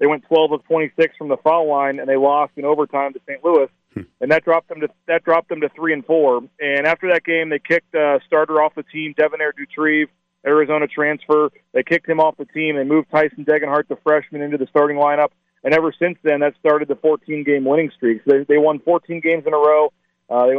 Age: 40-59